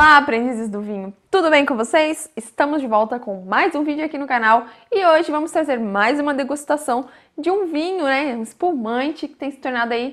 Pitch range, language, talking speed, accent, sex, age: 230-290 Hz, Portuguese, 215 wpm, Brazilian, female, 20-39